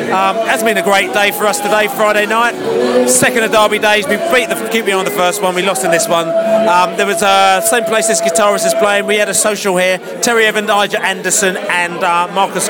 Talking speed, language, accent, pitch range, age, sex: 245 wpm, English, British, 175-215 Hz, 30-49, male